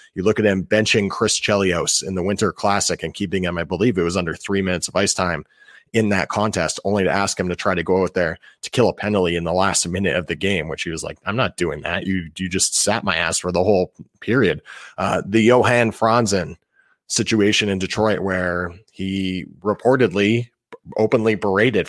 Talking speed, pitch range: 215 wpm, 95-110 Hz